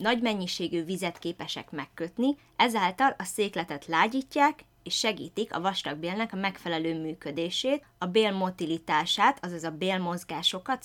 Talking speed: 115 wpm